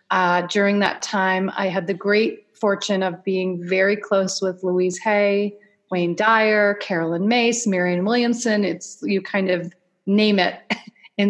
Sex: female